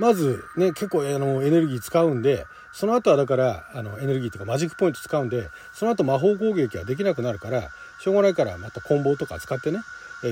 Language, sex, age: Japanese, male, 40-59